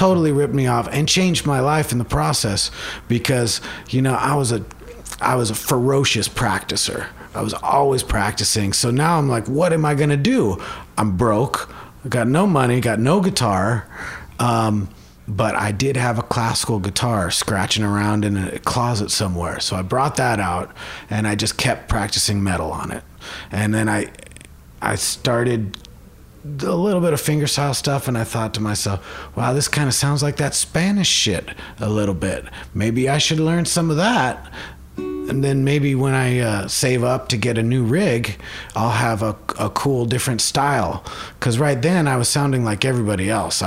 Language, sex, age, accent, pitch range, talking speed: English, male, 30-49, American, 100-140 Hz, 185 wpm